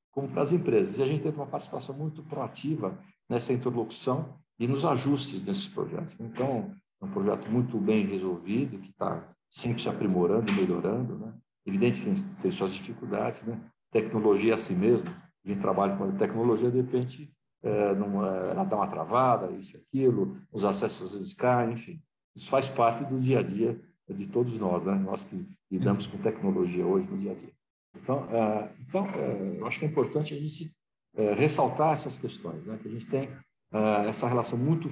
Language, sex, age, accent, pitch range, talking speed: Portuguese, male, 60-79, Brazilian, 105-155 Hz, 185 wpm